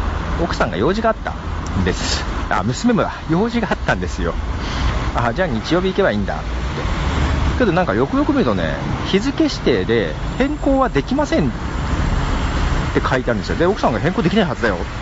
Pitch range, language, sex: 75-120 Hz, Japanese, male